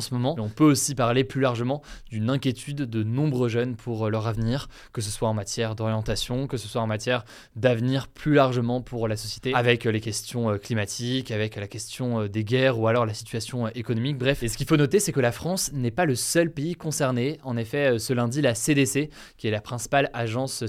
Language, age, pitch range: French, 20-39, 115-140 Hz